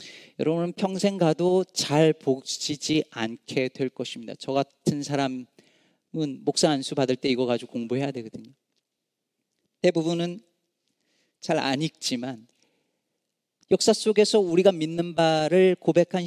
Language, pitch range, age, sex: Korean, 135-185 Hz, 40-59, male